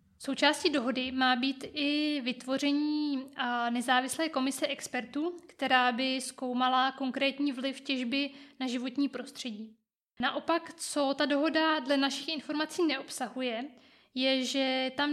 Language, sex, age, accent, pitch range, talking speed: Czech, female, 20-39, native, 250-280 Hz, 115 wpm